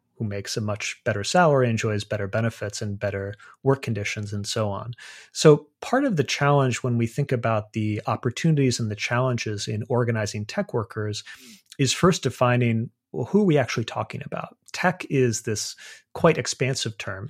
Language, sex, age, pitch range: English, male, 30-49, 110-140 Hz